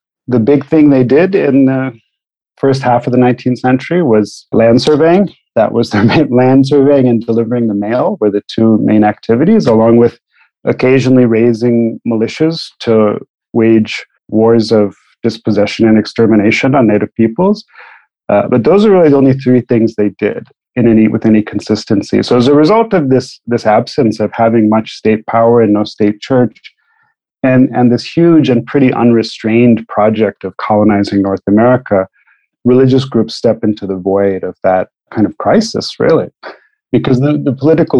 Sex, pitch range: male, 110-130 Hz